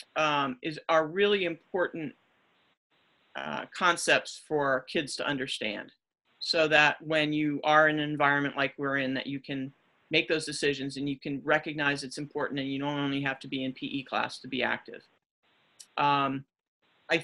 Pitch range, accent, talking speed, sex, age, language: 135-160 Hz, American, 170 wpm, male, 40-59, English